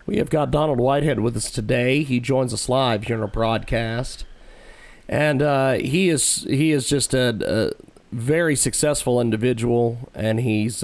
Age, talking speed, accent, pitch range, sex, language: 40-59, 165 wpm, American, 125-160 Hz, male, English